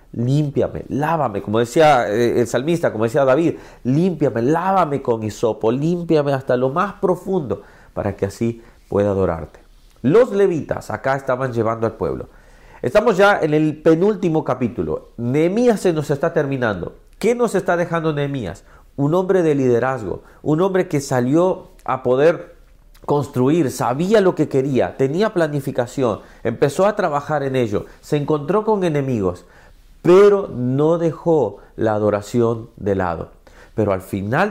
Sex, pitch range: male, 115-165 Hz